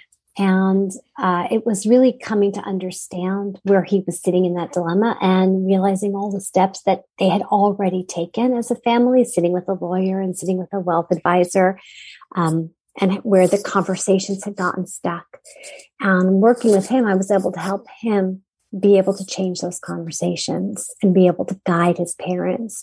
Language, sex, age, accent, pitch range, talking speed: English, female, 40-59, American, 165-200 Hz, 185 wpm